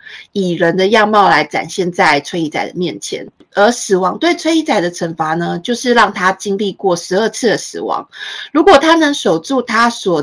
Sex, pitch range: female, 175-250 Hz